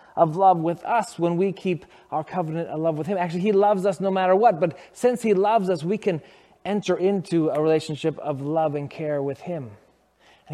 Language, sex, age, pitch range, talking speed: English, male, 20-39, 150-185 Hz, 215 wpm